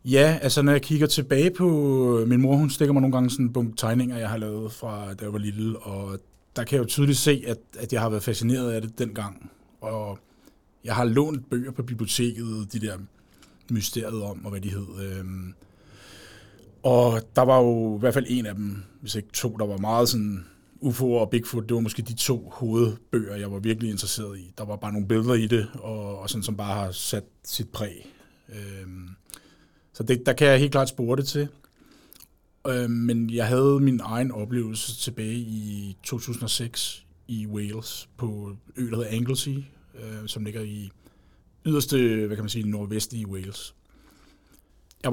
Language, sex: Danish, male